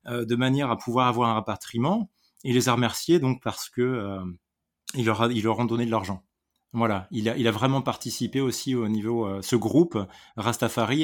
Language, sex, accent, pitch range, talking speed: French, male, French, 115-145 Hz, 210 wpm